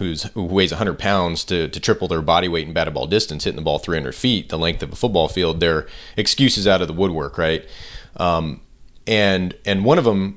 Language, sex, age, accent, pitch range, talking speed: English, male, 30-49, American, 85-105 Hz, 230 wpm